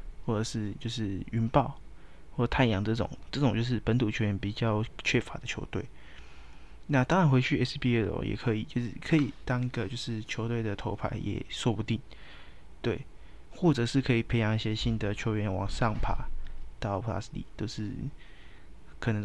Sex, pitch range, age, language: male, 100-125 Hz, 20-39, Chinese